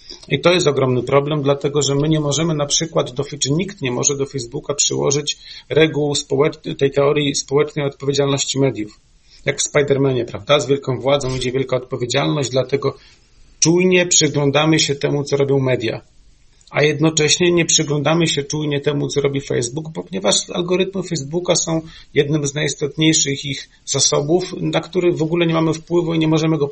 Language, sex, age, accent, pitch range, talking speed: Polish, male, 40-59, native, 135-155 Hz, 165 wpm